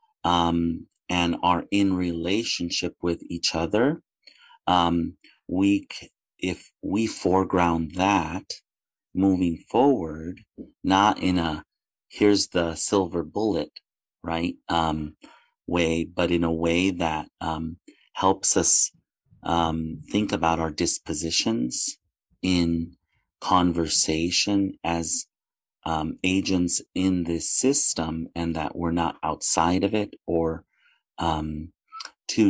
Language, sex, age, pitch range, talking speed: English, male, 30-49, 80-95 Hz, 105 wpm